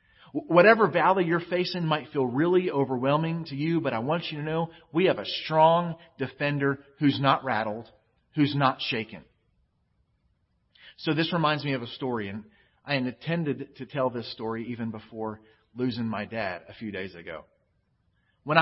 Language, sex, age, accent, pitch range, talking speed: English, male, 40-59, American, 115-150 Hz, 165 wpm